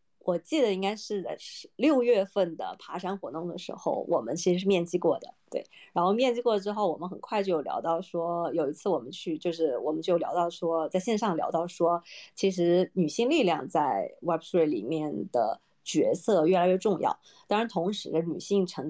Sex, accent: female, native